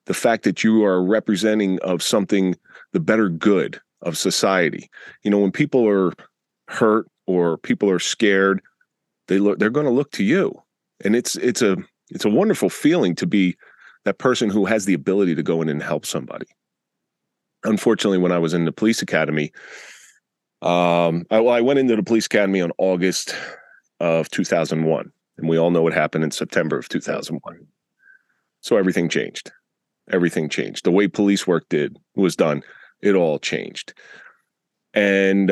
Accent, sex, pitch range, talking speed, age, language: American, male, 85-110 Hz, 170 wpm, 30-49, English